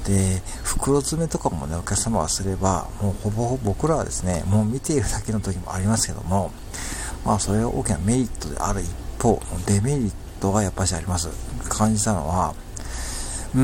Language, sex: Japanese, male